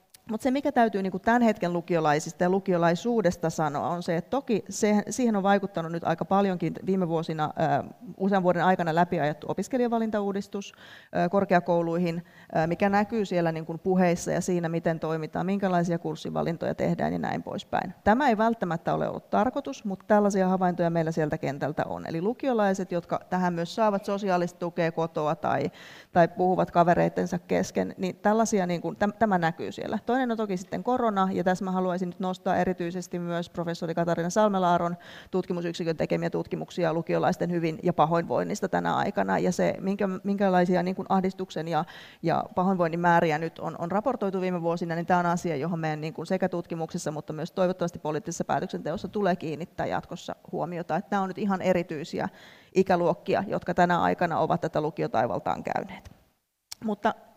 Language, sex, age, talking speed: Finnish, female, 30-49, 155 wpm